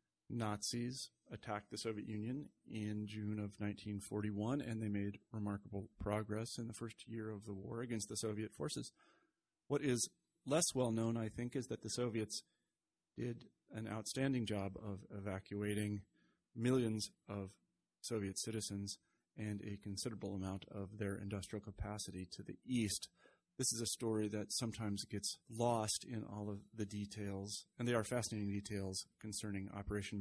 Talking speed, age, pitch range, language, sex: 150 wpm, 40-59, 100-115 Hz, English, male